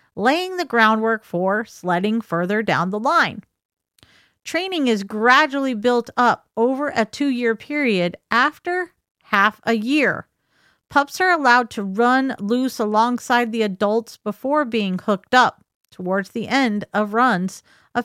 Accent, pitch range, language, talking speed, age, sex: American, 215-290 Hz, English, 135 wpm, 40-59, female